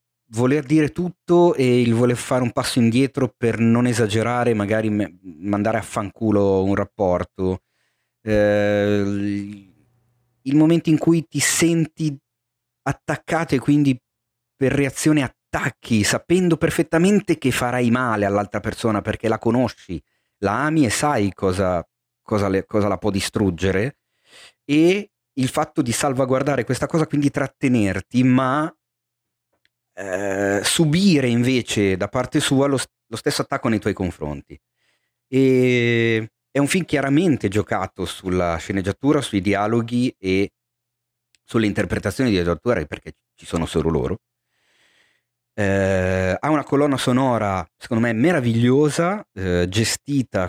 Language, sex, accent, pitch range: Italian, male, native, 100-135 Hz